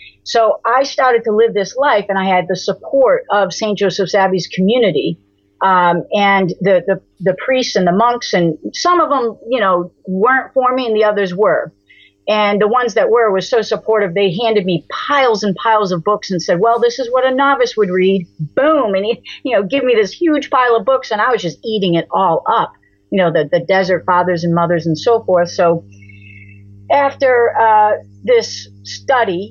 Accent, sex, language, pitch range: American, female, English, 170-215 Hz